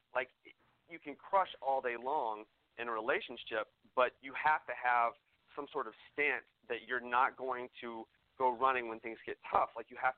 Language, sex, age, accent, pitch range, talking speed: English, male, 40-59, American, 120-155 Hz, 195 wpm